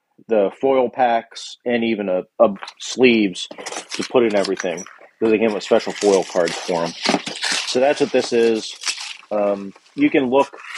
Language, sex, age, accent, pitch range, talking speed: English, male, 40-59, American, 105-120 Hz, 160 wpm